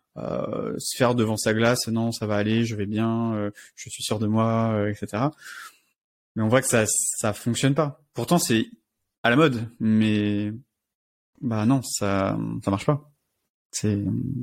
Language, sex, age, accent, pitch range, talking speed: French, male, 30-49, French, 110-135 Hz, 175 wpm